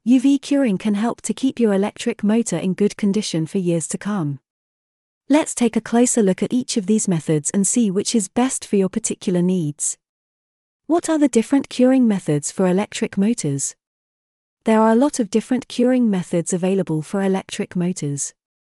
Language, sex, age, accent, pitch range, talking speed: English, female, 30-49, British, 175-235 Hz, 180 wpm